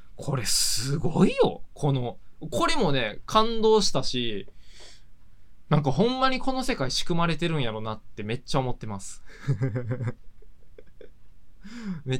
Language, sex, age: Japanese, male, 20-39